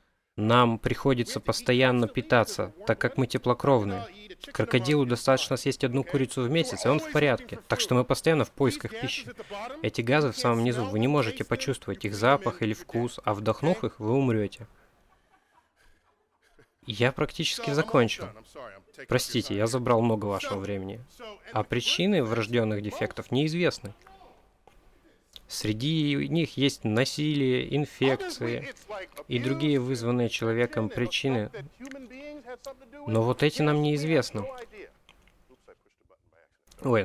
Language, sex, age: Russian, male, 20-39